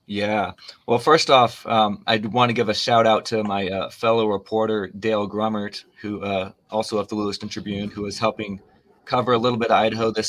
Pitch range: 105-120 Hz